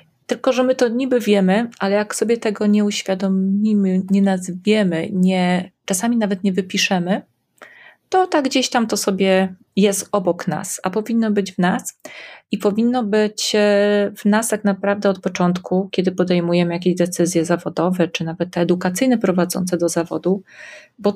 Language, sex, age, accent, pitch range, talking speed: Polish, female, 30-49, native, 180-215 Hz, 155 wpm